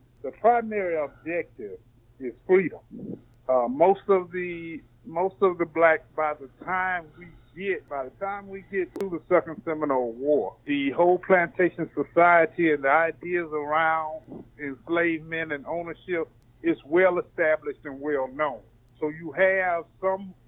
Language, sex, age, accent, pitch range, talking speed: English, male, 50-69, American, 140-180 Hz, 145 wpm